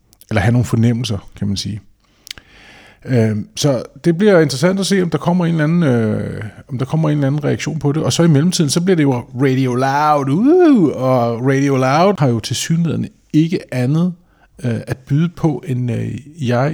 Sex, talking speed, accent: male, 170 wpm, native